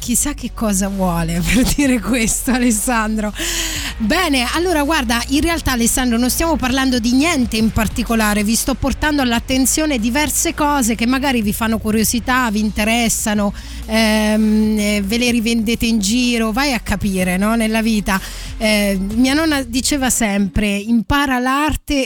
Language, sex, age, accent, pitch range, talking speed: Italian, female, 20-39, native, 220-285 Hz, 145 wpm